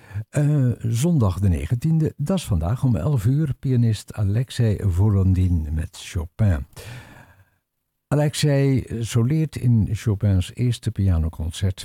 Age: 60-79